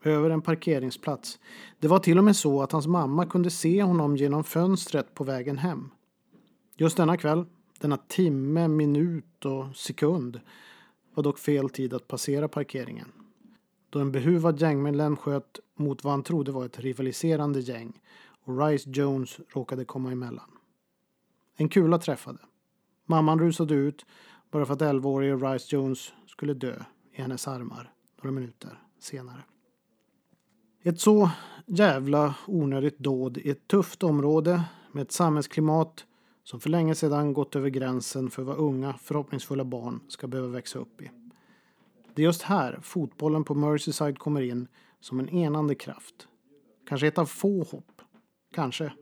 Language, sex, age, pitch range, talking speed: Swedish, male, 40-59, 140-170 Hz, 150 wpm